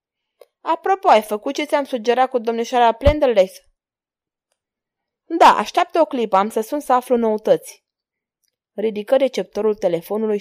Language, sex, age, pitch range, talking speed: Romanian, female, 20-39, 205-275 Hz, 125 wpm